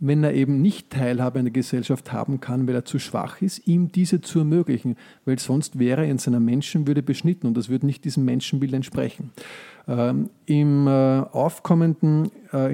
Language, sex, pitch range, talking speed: German, male, 125-150 Hz, 180 wpm